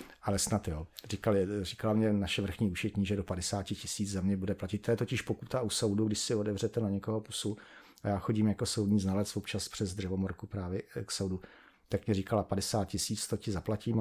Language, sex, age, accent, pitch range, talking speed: Czech, male, 40-59, native, 100-115 Hz, 210 wpm